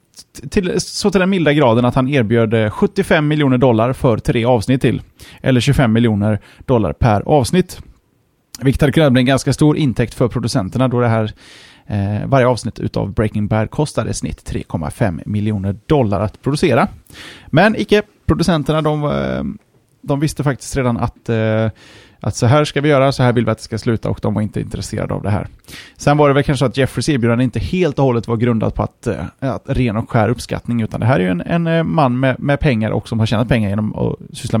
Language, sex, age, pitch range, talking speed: Swedish, male, 30-49, 110-140 Hz, 205 wpm